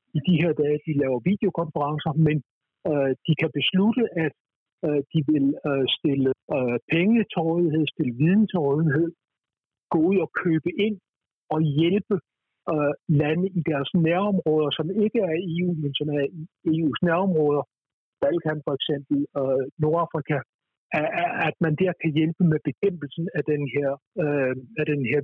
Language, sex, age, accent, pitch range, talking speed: Danish, male, 60-79, native, 145-170 Hz, 130 wpm